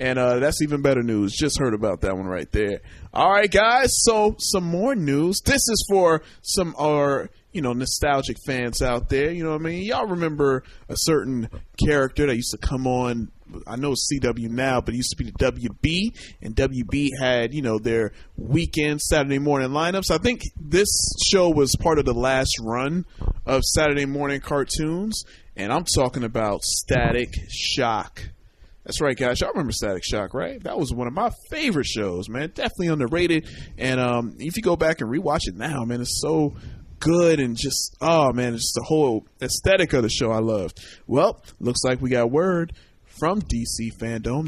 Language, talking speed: English, 195 wpm